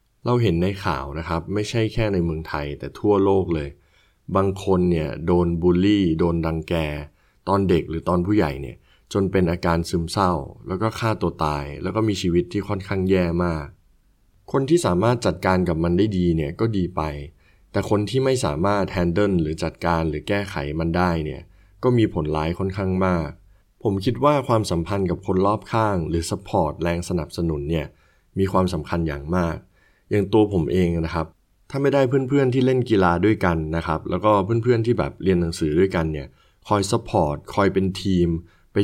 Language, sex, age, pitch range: Thai, male, 20-39, 80-105 Hz